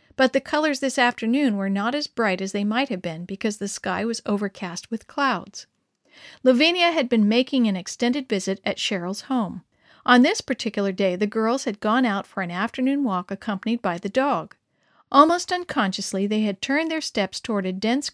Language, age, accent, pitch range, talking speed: English, 50-69, American, 195-255 Hz, 190 wpm